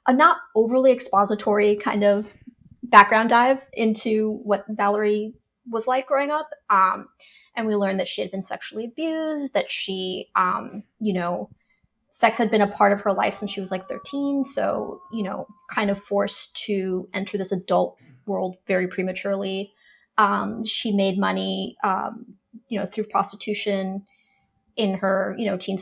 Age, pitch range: 30-49, 195-230 Hz